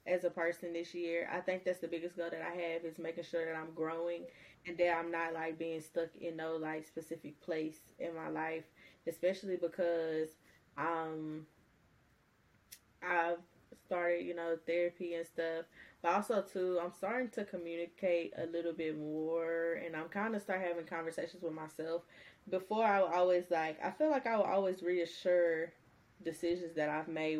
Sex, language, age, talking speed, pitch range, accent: female, English, 10-29, 175 wpm, 165-180 Hz, American